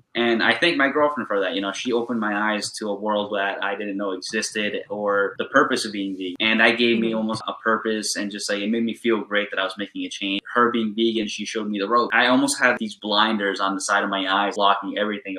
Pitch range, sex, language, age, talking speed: 100-115 Hz, male, English, 10-29, 270 wpm